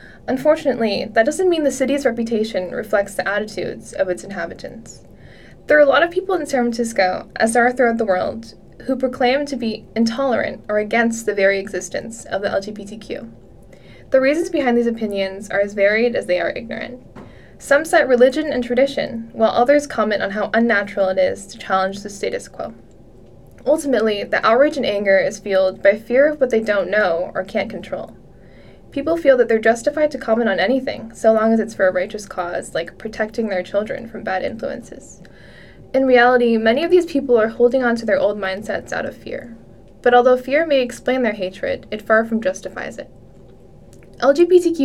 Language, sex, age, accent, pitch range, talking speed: English, female, 10-29, American, 205-270 Hz, 190 wpm